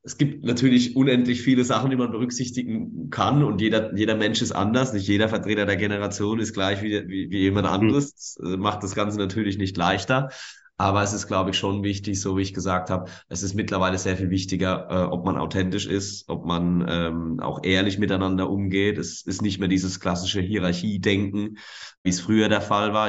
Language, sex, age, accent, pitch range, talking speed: German, male, 20-39, German, 95-110 Hz, 200 wpm